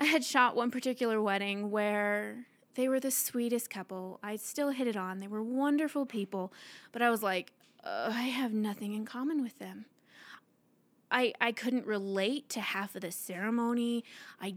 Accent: American